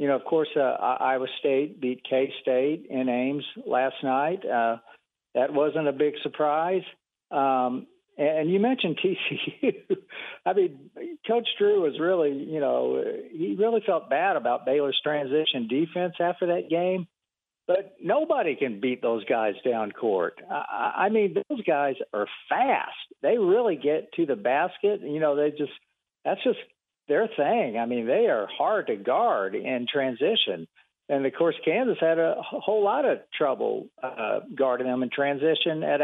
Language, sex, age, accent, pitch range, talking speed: English, male, 50-69, American, 135-205 Hz, 165 wpm